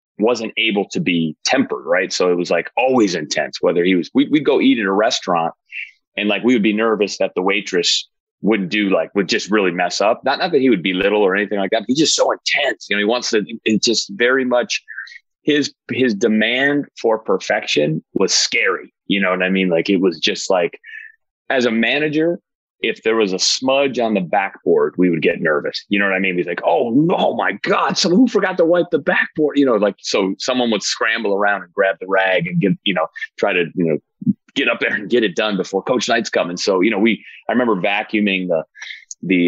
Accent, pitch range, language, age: American, 95-155 Hz, English, 30-49